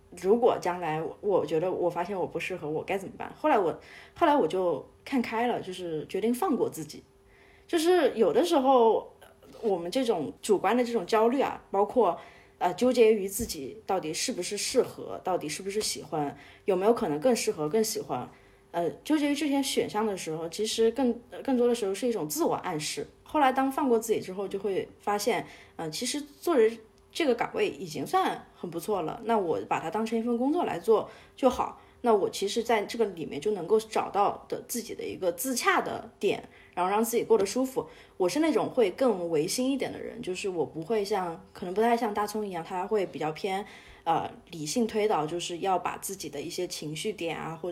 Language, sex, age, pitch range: Chinese, female, 20-39, 180-255 Hz